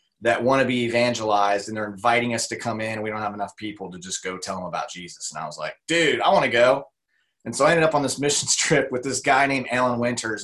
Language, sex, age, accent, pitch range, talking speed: English, male, 20-39, American, 110-145 Hz, 275 wpm